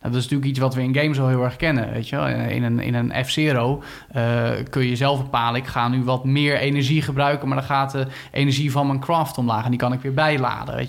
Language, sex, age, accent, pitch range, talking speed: Dutch, male, 20-39, Dutch, 125-160 Hz, 230 wpm